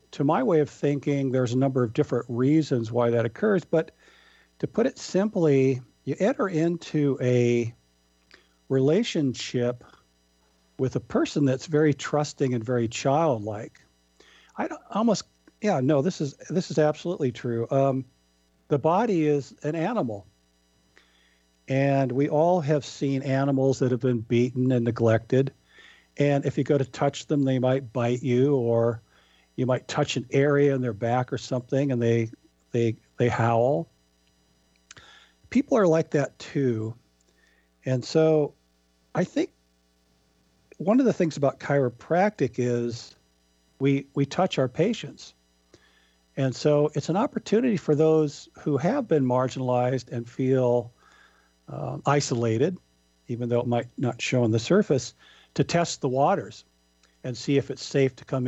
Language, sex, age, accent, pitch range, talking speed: English, male, 50-69, American, 115-150 Hz, 150 wpm